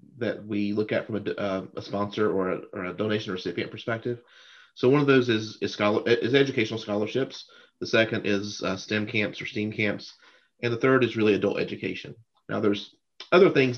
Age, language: 30-49, English